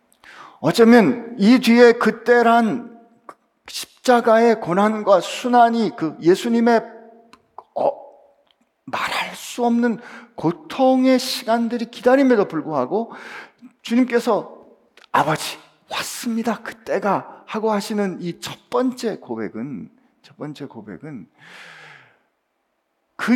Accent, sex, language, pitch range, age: native, male, Korean, 170-240 Hz, 50-69